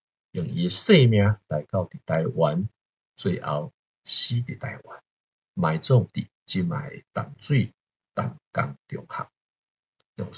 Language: Chinese